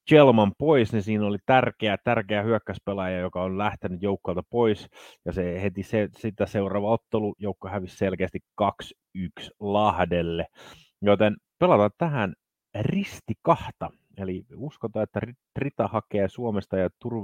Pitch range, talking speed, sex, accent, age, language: 90-115 Hz, 130 wpm, male, native, 30-49, Finnish